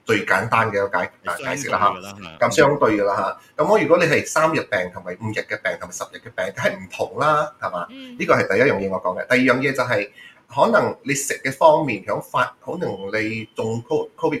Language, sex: Chinese, male